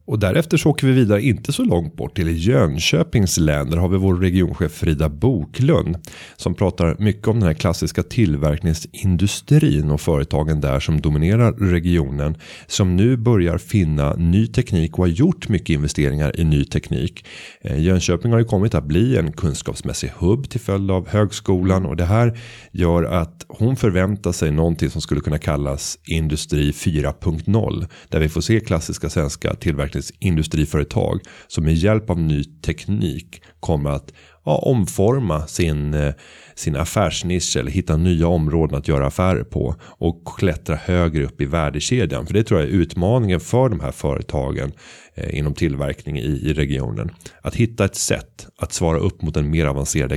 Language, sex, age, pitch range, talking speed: Swedish, male, 30-49, 75-100 Hz, 165 wpm